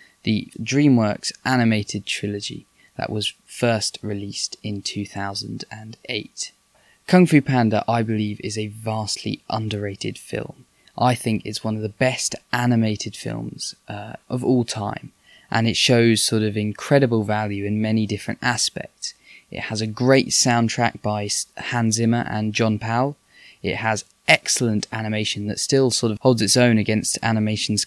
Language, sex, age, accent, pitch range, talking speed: English, male, 10-29, British, 105-120 Hz, 145 wpm